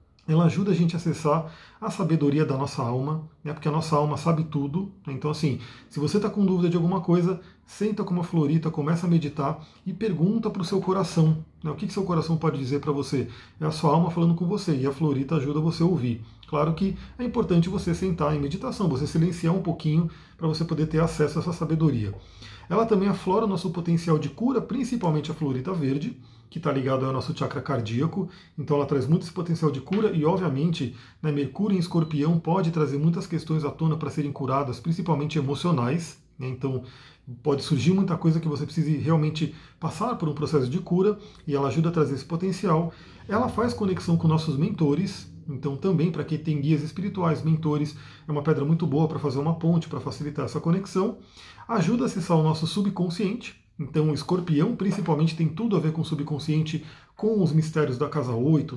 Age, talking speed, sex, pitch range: 40-59, 205 wpm, male, 145-180 Hz